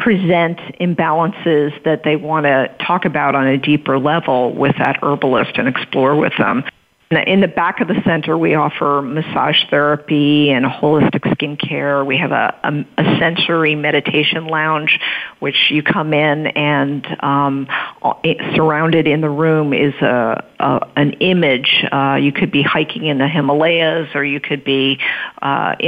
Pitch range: 150-165 Hz